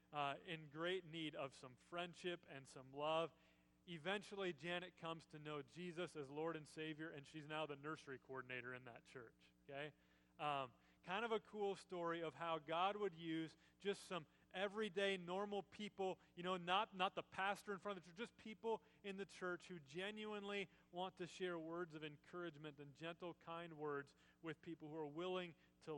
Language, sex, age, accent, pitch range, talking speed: English, male, 30-49, American, 140-175 Hz, 185 wpm